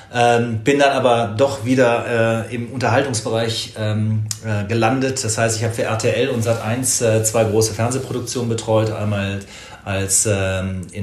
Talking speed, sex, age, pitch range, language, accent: 160 wpm, male, 30-49, 105-125 Hz, German, German